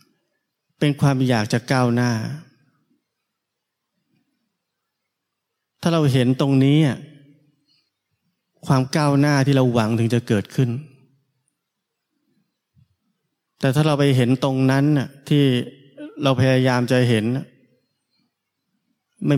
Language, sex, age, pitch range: Thai, male, 20-39, 120-145 Hz